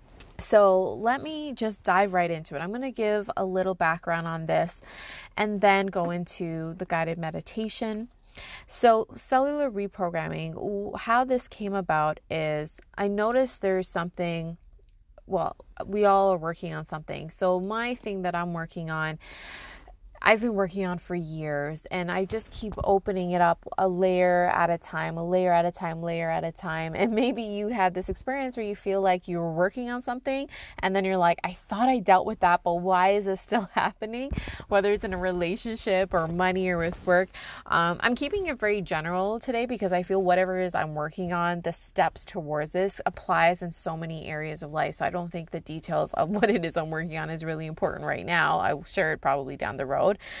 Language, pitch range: English, 170-210 Hz